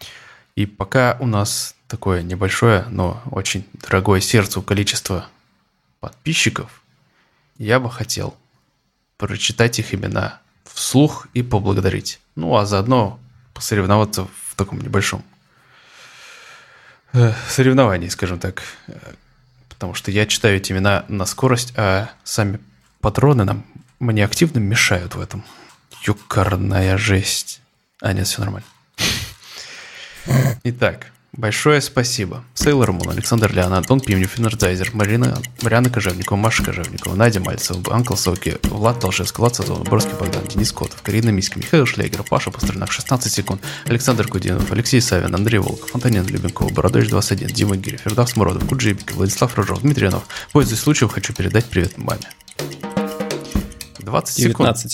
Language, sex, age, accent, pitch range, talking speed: Russian, male, 20-39, native, 95-120 Hz, 130 wpm